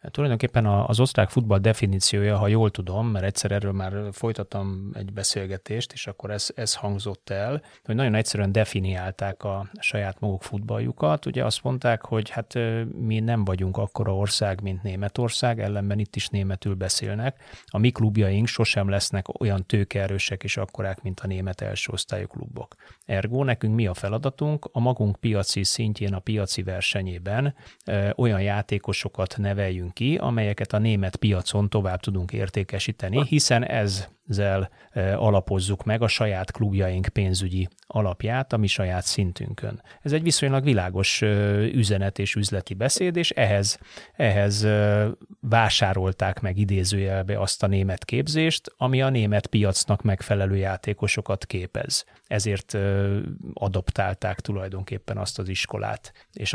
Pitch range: 95-115 Hz